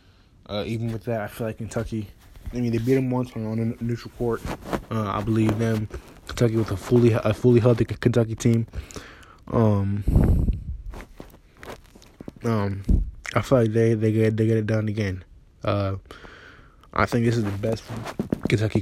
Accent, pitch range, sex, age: American, 95-115 Hz, male, 20-39